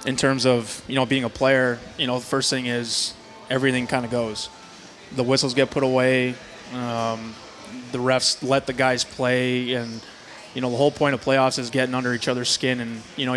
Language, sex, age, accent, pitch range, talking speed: English, male, 20-39, American, 120-130 Hz, 210 wpm